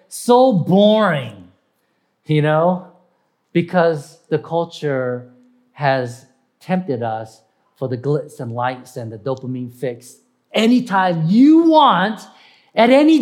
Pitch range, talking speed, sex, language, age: 130-190 Hz, 110 wpm, male, English, 40-59